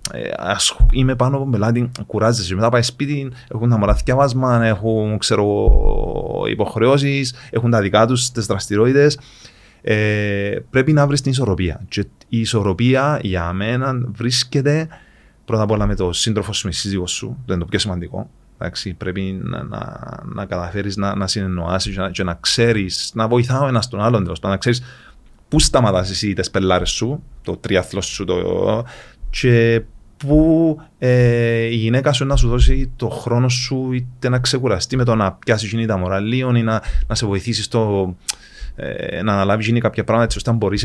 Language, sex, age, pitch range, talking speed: Greek, male, 30-49, 100-125 Hz, 160 wpm